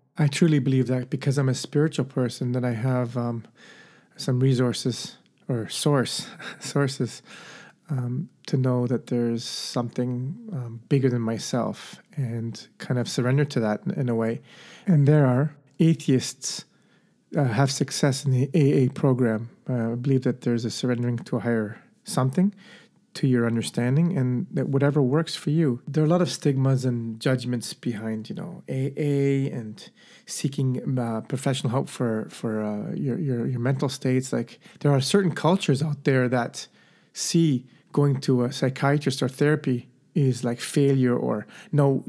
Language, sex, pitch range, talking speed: English, male, 125-150 Hz, 160 wpm